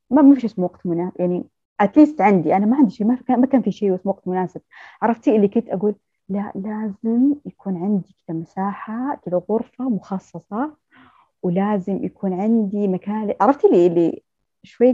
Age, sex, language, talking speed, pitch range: 20-39, female, Arabic, 175 wpm, 185-245 Hz